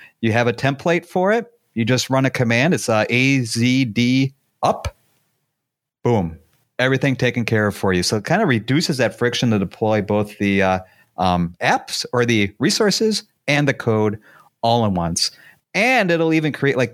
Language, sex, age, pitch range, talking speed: English, male, 40-59, 100-140 Hz, 175 wpm